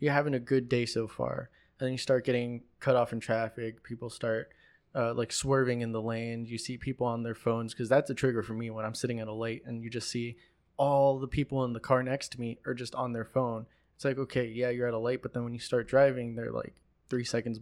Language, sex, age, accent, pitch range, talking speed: English, male, 20-39, American, 115-135 Hz, 265 wpm